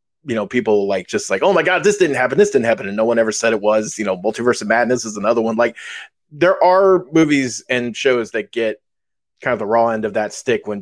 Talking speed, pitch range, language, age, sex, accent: 260 wpm, 115-175 Hz, English, 30-49, male, American